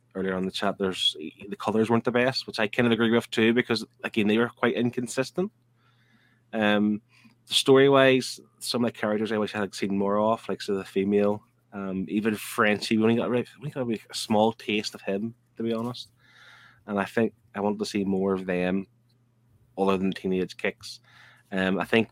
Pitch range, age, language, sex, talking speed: 100-120 Hz, 20-39, English, male, 205 wpm